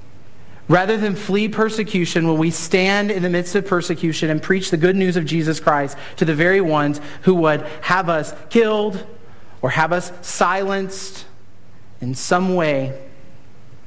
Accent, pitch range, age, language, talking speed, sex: American, 145-170 Hz, 40-59, English, 155 wpm, male